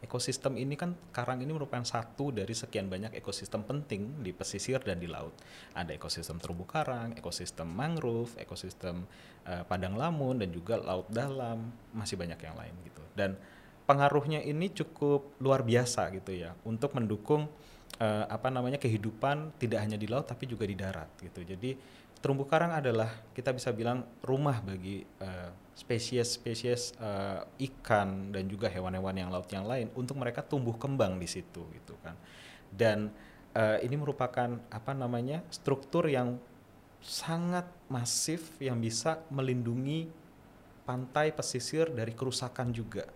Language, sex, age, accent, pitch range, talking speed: Indonesian, male, 30-49, native, 100-135 Hz, 145 wpm